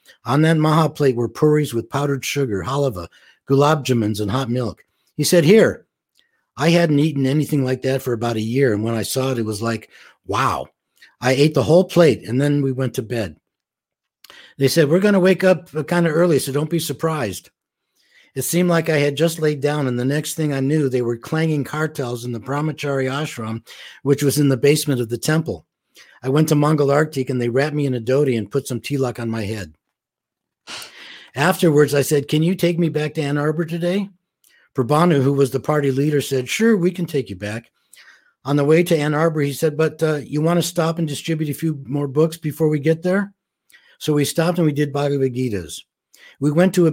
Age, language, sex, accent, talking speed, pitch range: 60-79, English, male, American, 220 wpm, 130-160 Hz